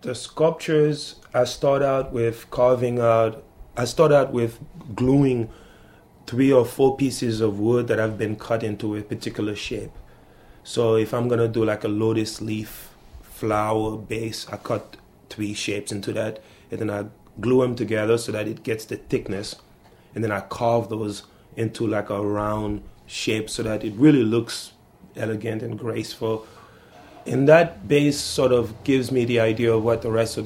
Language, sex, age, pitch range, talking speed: English, male, 30-49, 110-125 Hz, 175 wpm